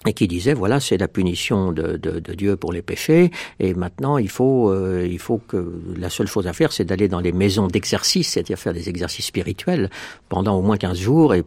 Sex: male